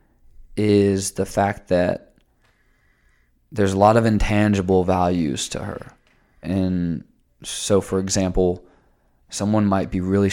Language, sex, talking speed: English, male, 115 wpm